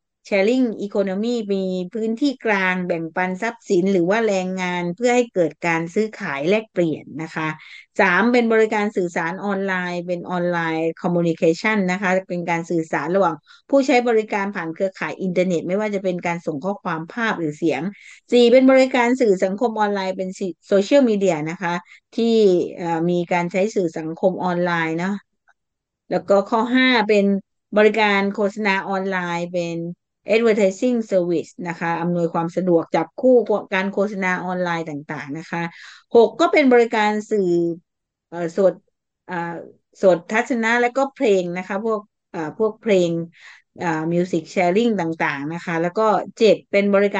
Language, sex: English, female